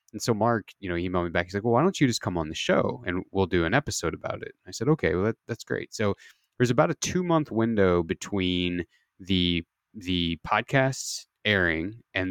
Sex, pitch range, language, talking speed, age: male, 90-110 Hz, English, 225 wpm, 20-39